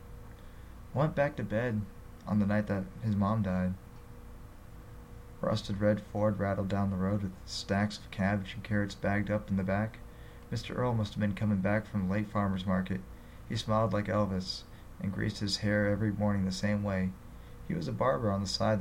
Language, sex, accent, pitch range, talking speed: English, male, American, 95-115 Hz, 195 wpm